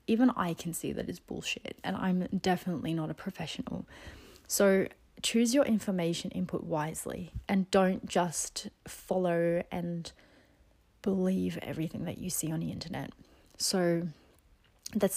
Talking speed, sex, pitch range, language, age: 135 wpm, female, 175-220 Hz, English, 30-49